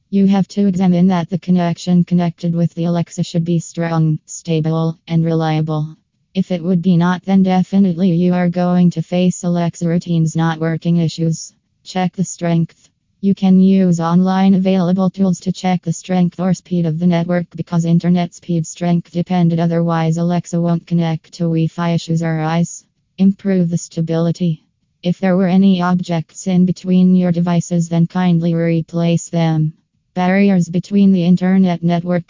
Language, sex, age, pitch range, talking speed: English, female, 20-39, 165-180 Hz, 160 wpm